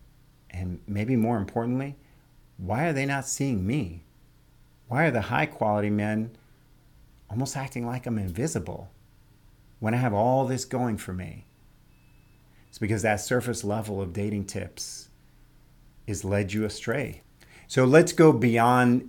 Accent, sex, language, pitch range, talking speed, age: American, male, English, 100-135 Hz, 140 wpm, 40-59